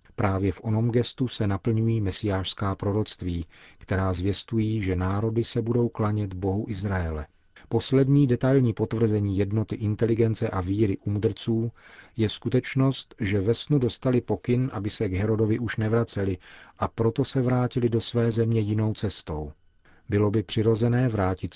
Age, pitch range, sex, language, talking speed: 40-59, 95-115 Hz, male, Czech, 140 wpm